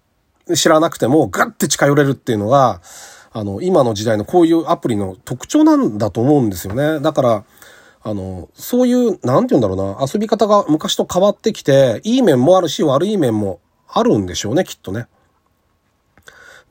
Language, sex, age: Japanese, male, 40-59